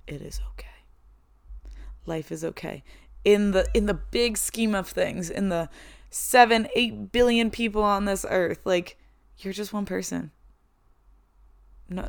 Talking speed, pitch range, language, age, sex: 145 wpm, 170-205 Hz, English, 20-39, female